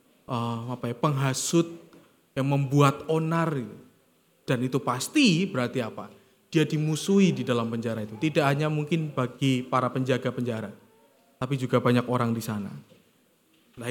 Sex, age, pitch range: male, 20-39, 140-215 Hz